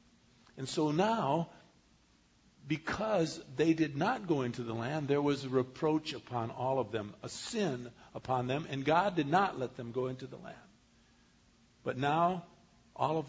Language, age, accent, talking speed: English, 50-69, American, 165 wpm